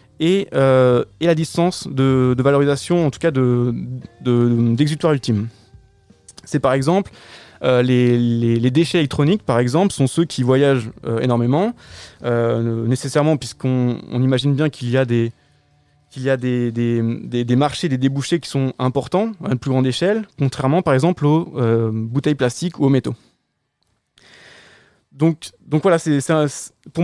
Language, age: French, 20-39